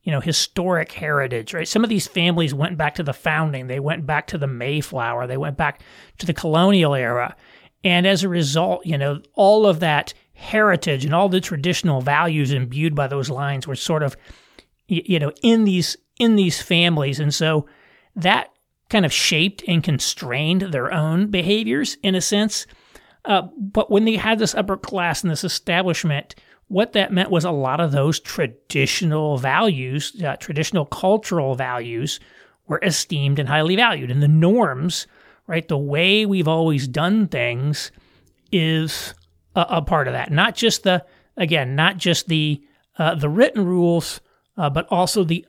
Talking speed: 175 wpm